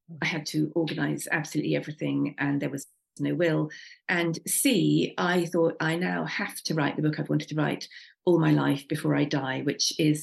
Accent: British